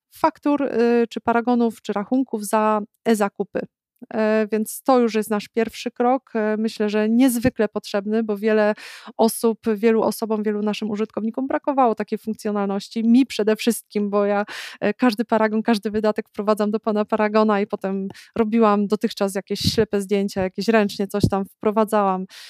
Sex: female